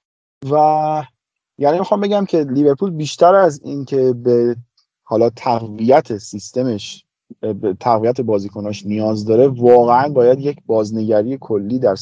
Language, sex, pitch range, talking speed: Persian, male, 110-145 Hz, 125 wpm